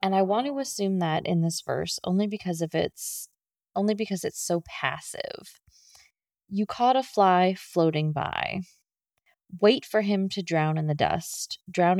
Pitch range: 160-200 Hz